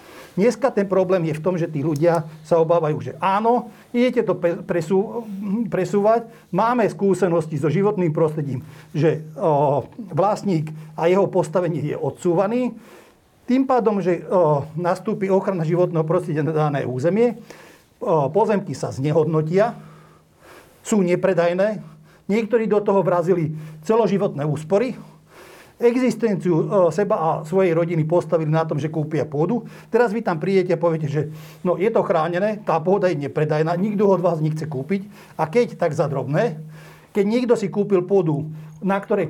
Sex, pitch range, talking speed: male, 160-200 Hz, 140 wpm